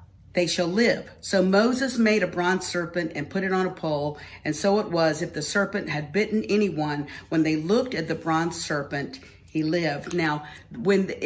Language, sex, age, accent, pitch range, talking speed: English, female, 50-69, American, 155-200 Hz, 190 wpm